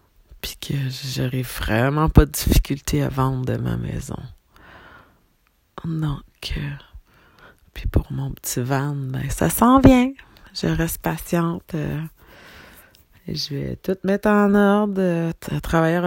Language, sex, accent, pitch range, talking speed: French, female, Canadian, 130-165 Hz, 125 wpm